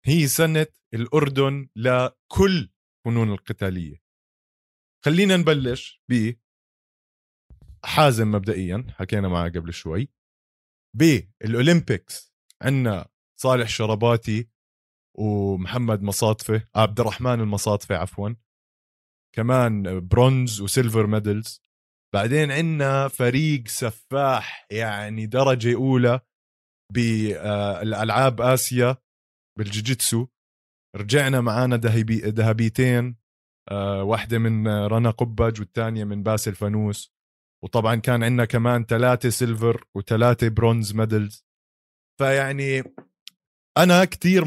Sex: male